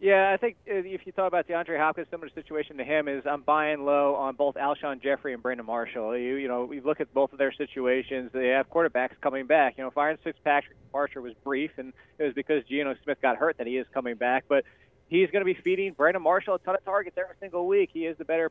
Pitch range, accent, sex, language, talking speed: 140-170 Hz, American, male, English, 260 wpm